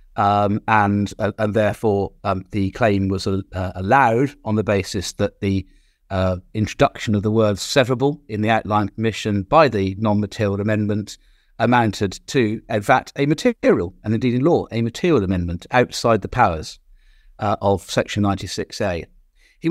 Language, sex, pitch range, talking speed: English, male, 100-125 Hz, 155 wpm